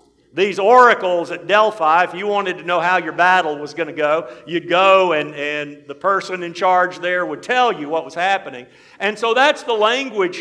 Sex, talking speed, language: male, 210 wpm, English